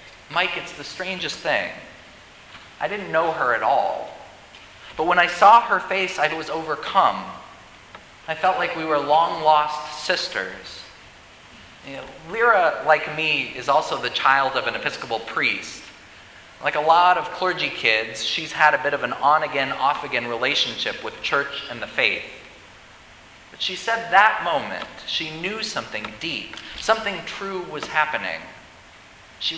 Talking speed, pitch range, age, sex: 145 wpm, 125-180 Hz, 30-49, male